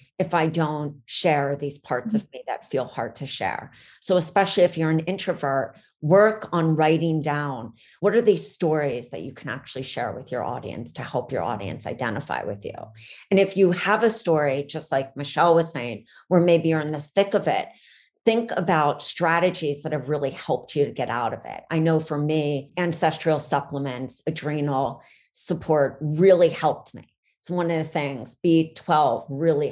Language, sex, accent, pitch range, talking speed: English, female, American, 140-175 Hz, 190 wpm